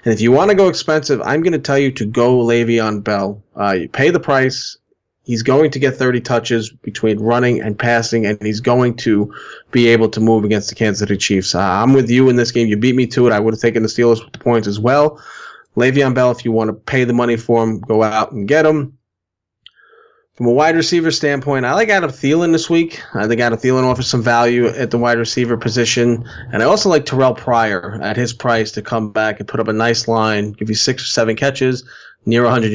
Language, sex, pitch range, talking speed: English, male, 110-130 Hz, 240 wpm